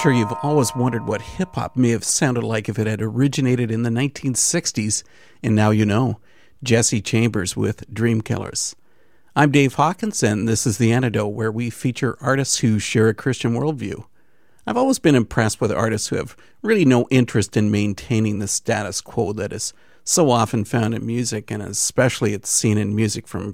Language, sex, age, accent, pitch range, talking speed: English, male, 50-69, American, 110-135 Hz, 185 wpm